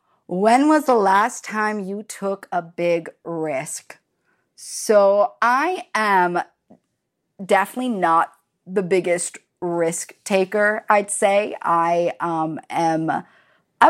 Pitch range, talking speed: 175-230 Hz, 110 wpm